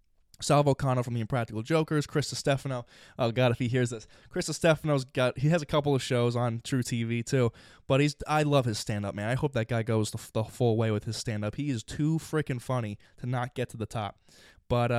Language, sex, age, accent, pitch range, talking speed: English, male, 20-39, American, 115-145 Hz, 235 wpm